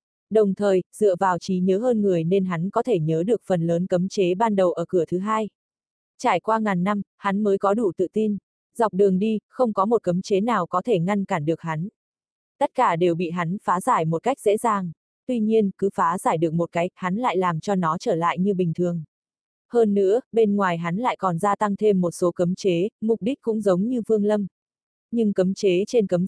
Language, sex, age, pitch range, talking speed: Vietnamese, female, 20-39, 180-220 Hz, 235 wpm